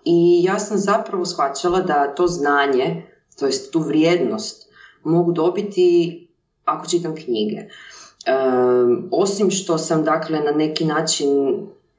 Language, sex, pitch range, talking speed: Croatian, female, 155-215 Hz, 125 wpm